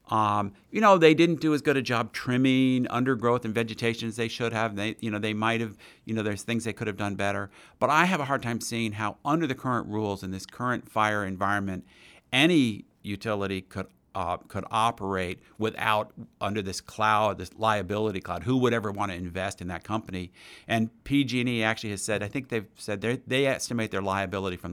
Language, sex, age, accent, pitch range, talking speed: English, male, 50-69, American, 100-125 Hz, 210 wpm